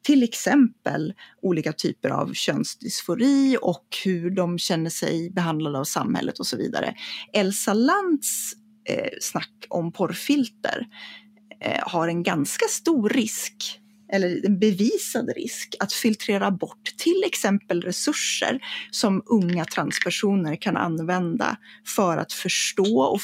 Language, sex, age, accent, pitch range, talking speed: Swedish, female, 30-49, native, 170-230 Hz, 125 wpm